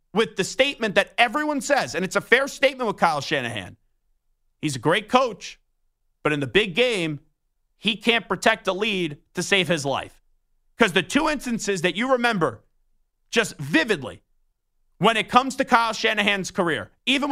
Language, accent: English, American